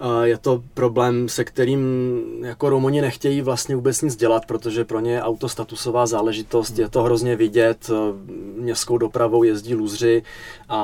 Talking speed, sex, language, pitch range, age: 155 wpm, male, Czech, 115-140 Hz, 20-39